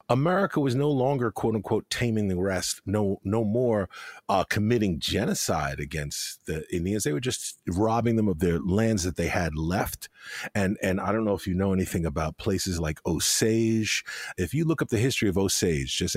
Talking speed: 195 wpm